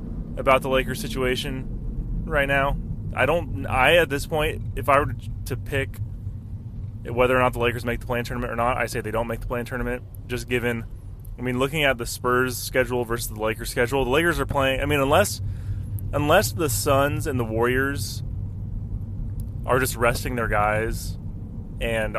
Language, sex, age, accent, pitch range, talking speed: English, male, 20-39, American, 110-130 Hz, 185 wpm